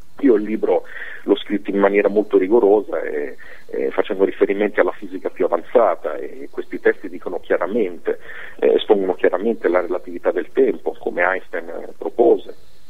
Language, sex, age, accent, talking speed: Italian, male, 40-59, native, 140 wpm